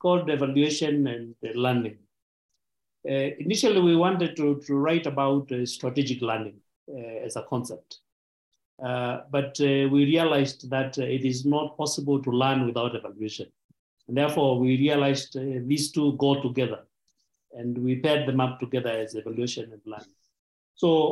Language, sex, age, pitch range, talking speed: English, male, 50-69, 125-160 Hz, 150 wpm